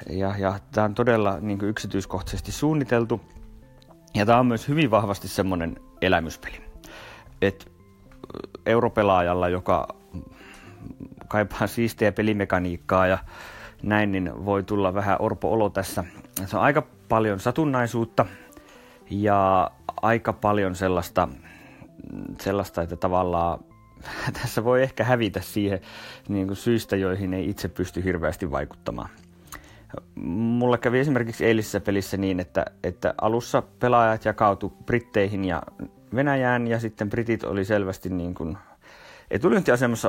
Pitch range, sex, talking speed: 90-110 Hz, male, 115 wpm